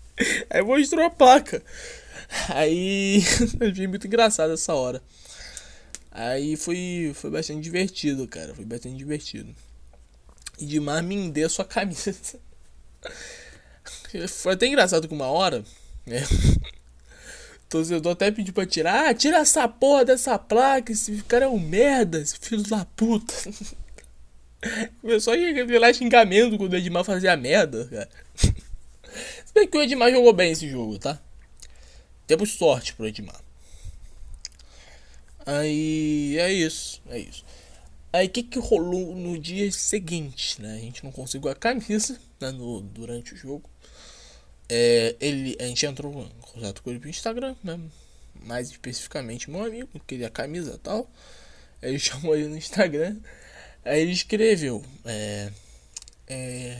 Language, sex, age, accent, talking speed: Portuguese, male, 20-39, Brazilian, 135 wpm